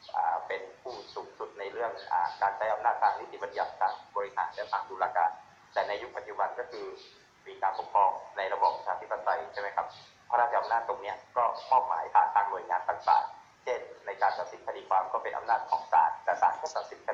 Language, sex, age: Thai, male, 30-49